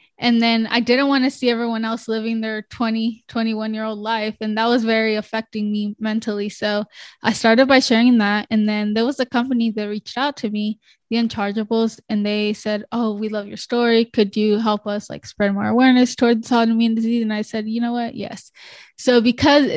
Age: 10-29